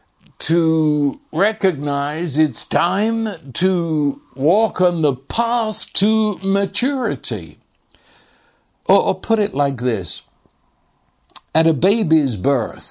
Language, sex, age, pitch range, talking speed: English, male, 60-79, 140-215 Hz, 100 wpm